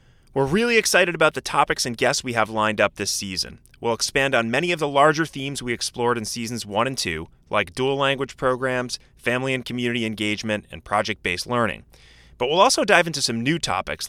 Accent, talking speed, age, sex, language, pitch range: American, 205 wpm, 30-49, male, English, 100-140 Hz